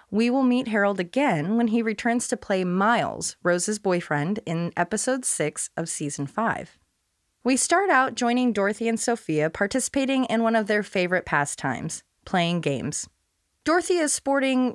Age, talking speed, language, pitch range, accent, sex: 30-49, 155 wpm, English, 175-245 Hz, American, female